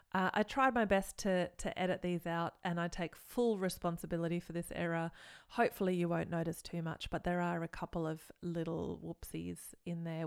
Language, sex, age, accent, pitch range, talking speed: English, female, 30-49, Australian, 170-215 Hz, 200 wpm